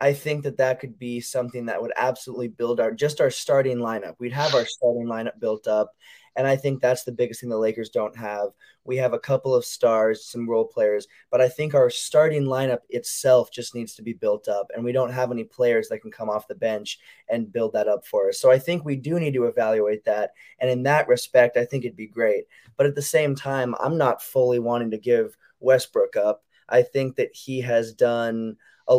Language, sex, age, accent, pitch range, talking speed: English, male, 20-39, American, 115-140 Hz, 230 wpm